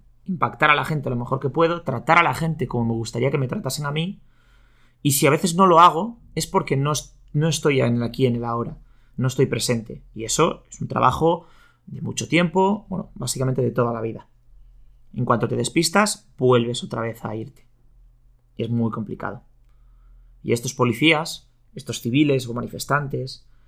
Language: Spanish